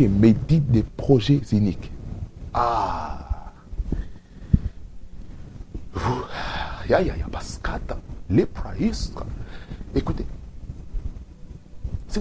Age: 60-79